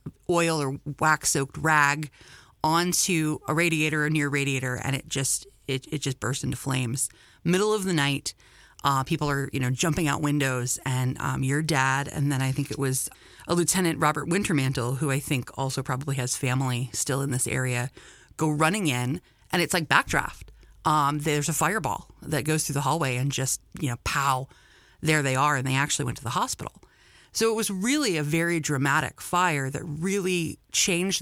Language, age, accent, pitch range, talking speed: English, 30-49, American, 135-155 Hz, 190 wpm